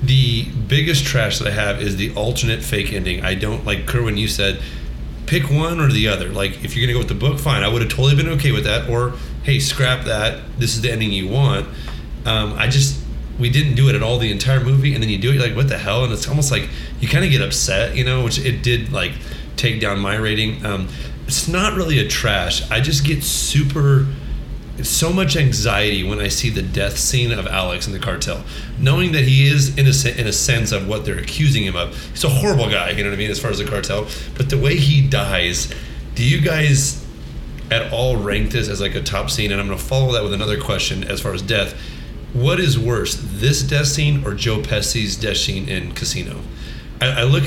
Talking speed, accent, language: 240 wpm, American, English